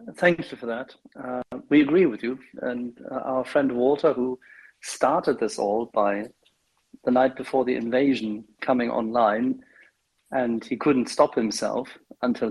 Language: English